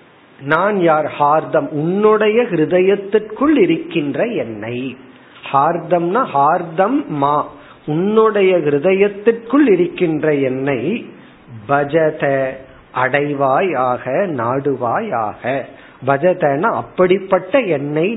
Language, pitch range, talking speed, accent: Tamil, 135-190 Hz, 35 wpm, native